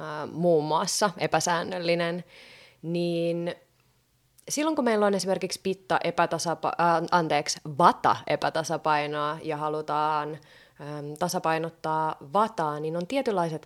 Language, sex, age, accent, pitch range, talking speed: Finnish, female, 20-39, native, 155-195 Hz, 105 wpm